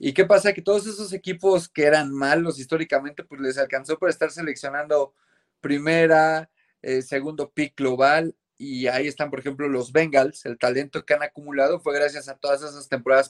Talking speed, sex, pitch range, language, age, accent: 180 wpm, male, 130-160 Hz, Spanish, 30-49, Mexican